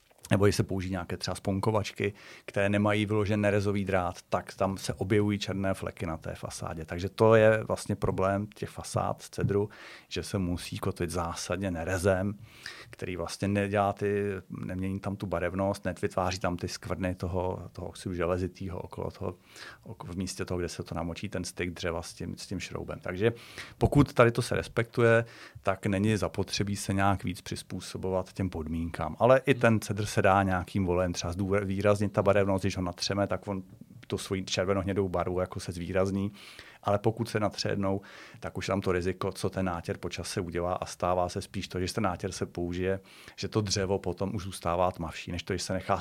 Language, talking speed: Czech, 190 wpm